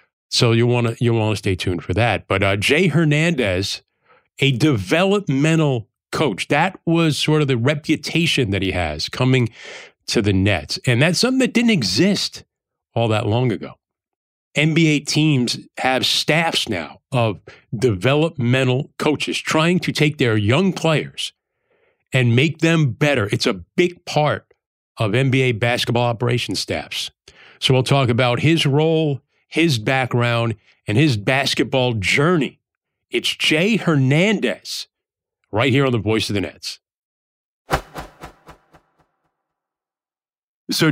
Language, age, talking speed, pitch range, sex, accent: English, 40-59, 130 wpm, 115-160 Hz, male, American